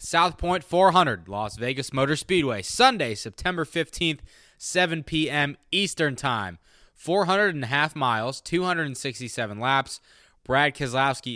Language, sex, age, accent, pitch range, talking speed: English, male, 20-39, American, 115-155 Hz, 120 wpm